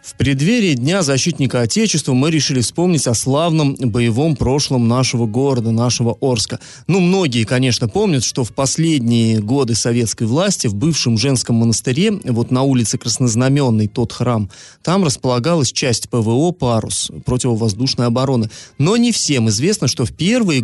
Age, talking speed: 30-49, 145 wpm